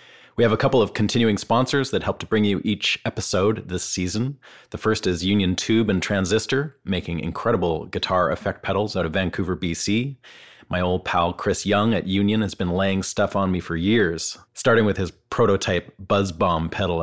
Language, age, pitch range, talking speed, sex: English, 30-49, 85-105 Hz, 190 wpm, male